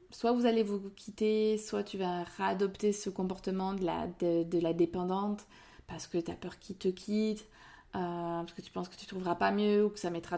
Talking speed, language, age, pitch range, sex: 220 wpm, French, 30-49, 175-205 Hz, female